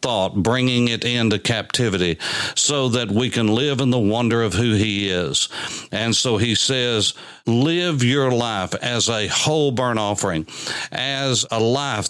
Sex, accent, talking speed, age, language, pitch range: male, American, 155 wpm, 60-79, English, 105-130 Hz